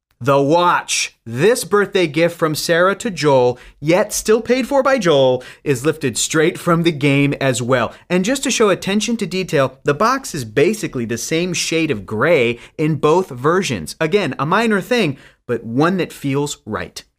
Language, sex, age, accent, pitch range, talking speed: English, male, 30-49, American, 130-200 Hz, 180 wpm